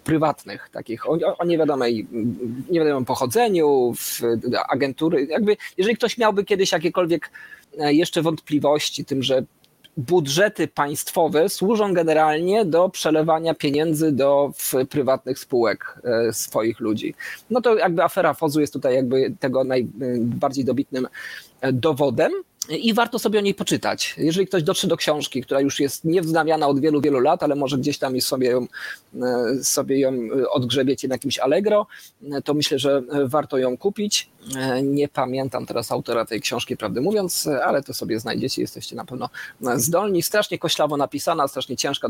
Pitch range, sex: 130-170 Hz, male